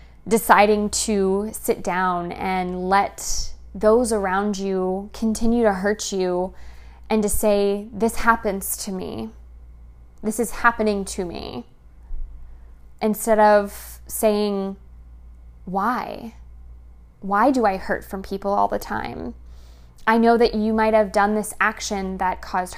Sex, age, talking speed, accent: female, 20-39, 130 wpm, American